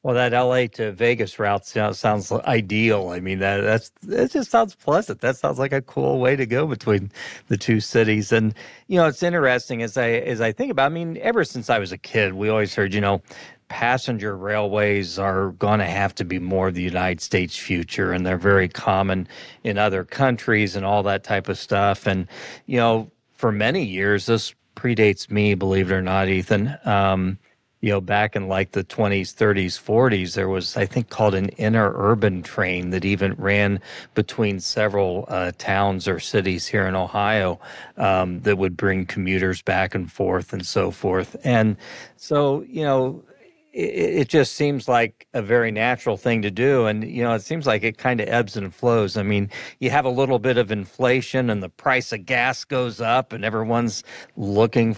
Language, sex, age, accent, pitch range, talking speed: English, male, 40-59, American, 100-120 Hz, 200 wpm